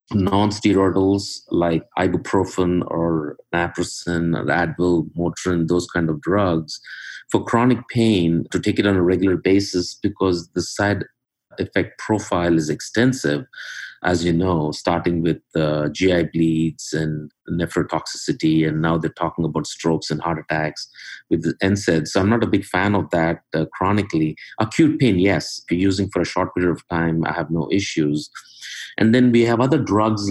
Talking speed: 165 wpm